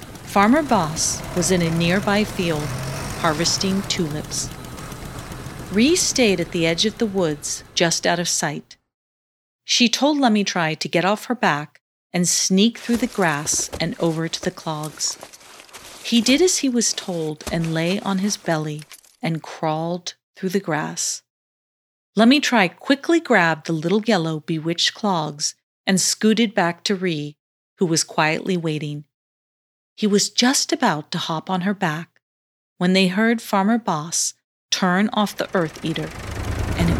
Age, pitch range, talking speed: 40-59, 160-215 Hz, 150 wpm